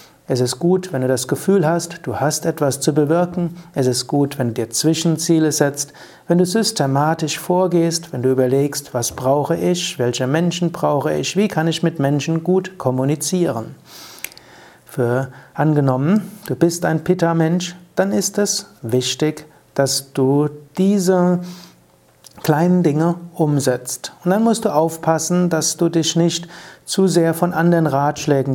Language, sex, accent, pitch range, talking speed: German, male, German, 135-170 Hz, 150 wpm